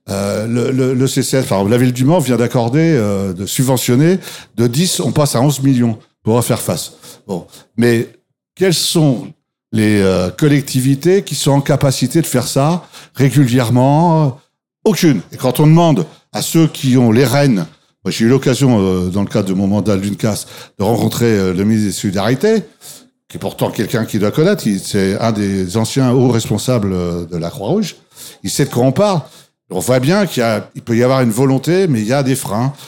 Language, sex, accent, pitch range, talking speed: French, male, French, 115-150 Hz, 210 wpm